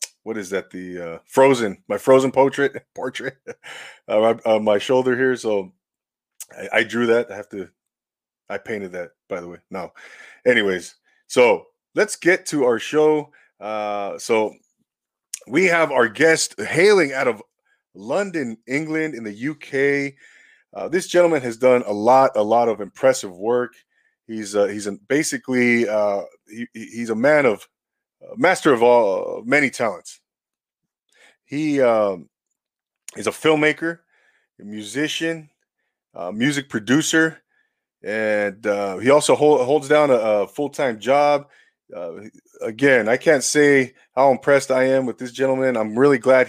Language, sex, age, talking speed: English, male, 30-49, 150 wpm